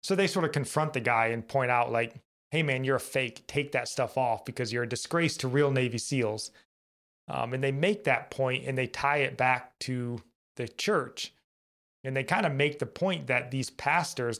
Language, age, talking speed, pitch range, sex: English, 30-49, 215 wpm, 120-145 Hz, male